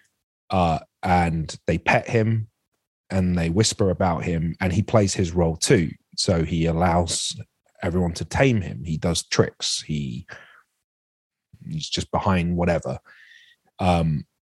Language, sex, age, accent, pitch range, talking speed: English, male, 30-49, British, 85-100 Hz, 130 wpm